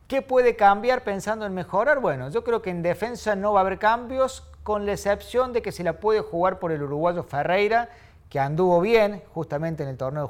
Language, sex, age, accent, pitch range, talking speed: Spanish, male, 40-59, Argentinian, 150-215 Hz, 215 wpm